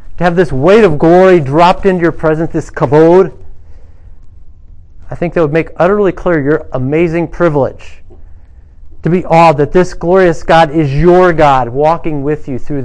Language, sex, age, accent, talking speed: English, male, 40-59, American, 170 wpm